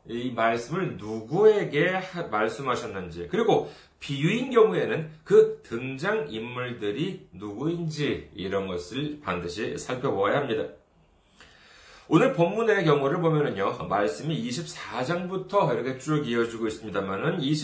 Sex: male